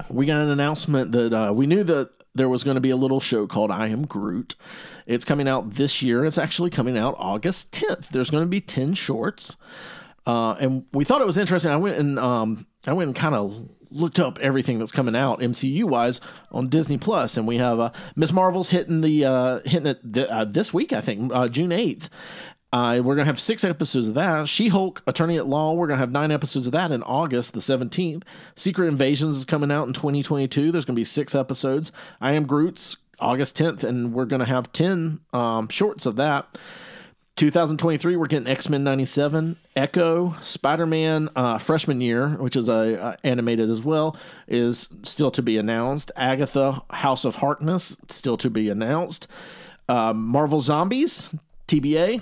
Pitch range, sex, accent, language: 125-165 Hz, male, American, English